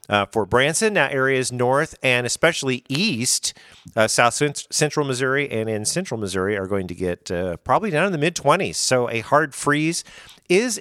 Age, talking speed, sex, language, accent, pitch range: 50-69, 185 wpm, male, English, American, 110-150 Hz